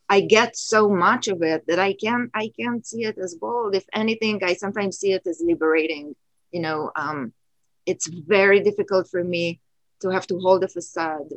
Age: 30-49